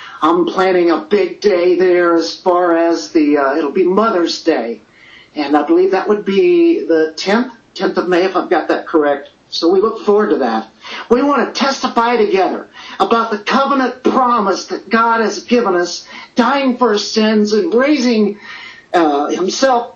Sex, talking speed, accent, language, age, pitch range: male, 175 wpm, American, English, 50-69, 170-245 Hz